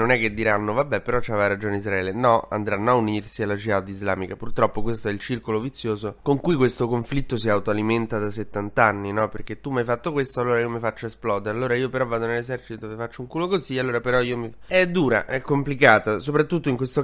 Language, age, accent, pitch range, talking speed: Italian, 20-39, native, 110-130 Hz, 225 wpm